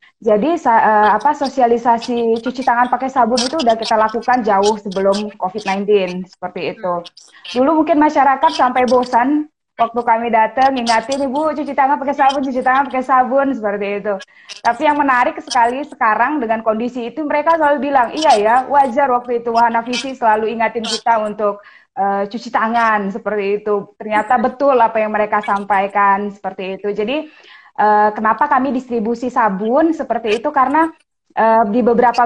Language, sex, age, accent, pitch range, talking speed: Indonesian, female, 20-39, native, 210-255 Hz, 155 wpm